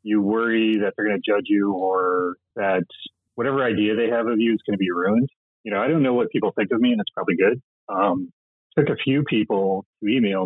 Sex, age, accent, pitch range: male, 30-49, American, 90-115 Hz